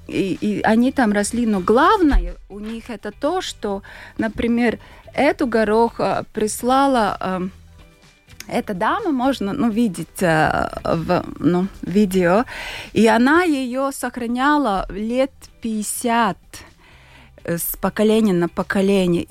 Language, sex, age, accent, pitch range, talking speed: Russian, female, 20-39, native, 195-250 Hz, 110 wpm